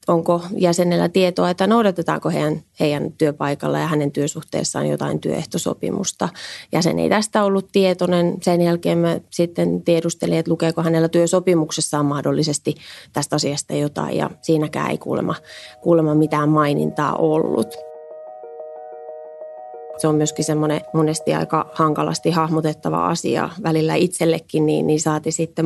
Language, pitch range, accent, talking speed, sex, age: Finnish, 150-175 Hz, native, 125 wpm, female, 30-49